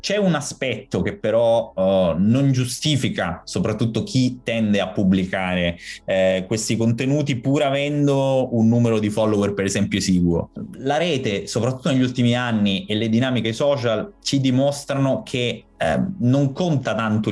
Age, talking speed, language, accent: 20-39, 140 wpm, Italian, native